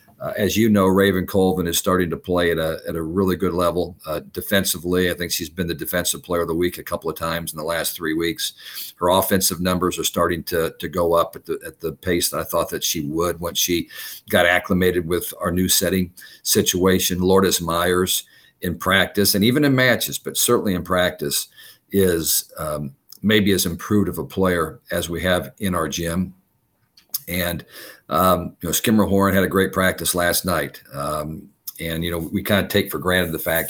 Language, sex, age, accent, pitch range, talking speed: English, male, 50-69, American, 85-95 Hz, 205 wpm